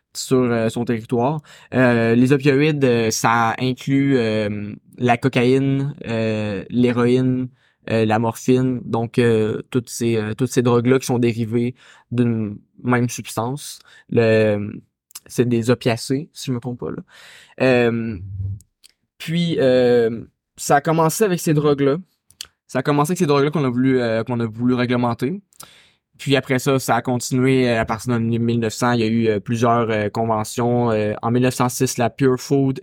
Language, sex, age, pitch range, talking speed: French, male, 20-39, 115-135 Hz, 155 wpm